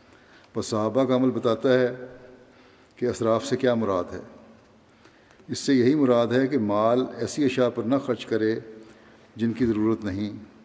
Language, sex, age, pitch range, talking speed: Urdu, male, 60-79, 110-125 Hz, 160 wpm